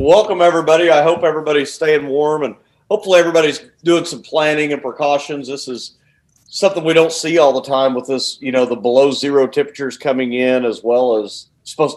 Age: 40-59